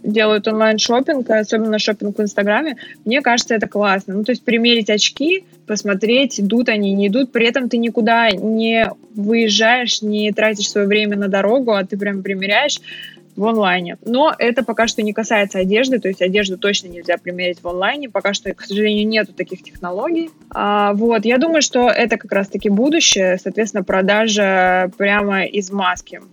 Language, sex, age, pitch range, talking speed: Russian, female, 20-39, 200-230 Hz, 170 wpm